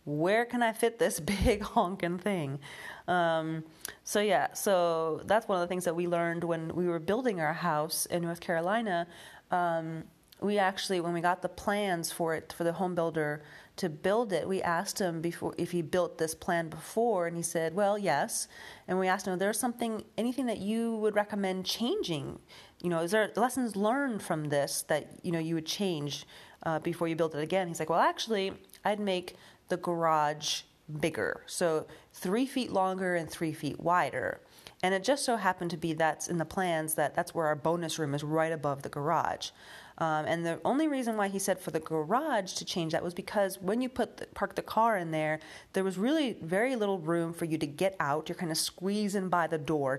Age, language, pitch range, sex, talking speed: 30-49, English, 160-200 Hz, female, 210 wpm